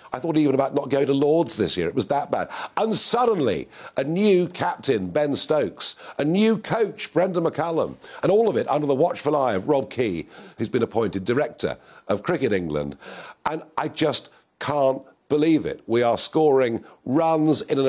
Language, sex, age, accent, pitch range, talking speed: English, male, 50-69, British, 115-165 Hz, 190 wpm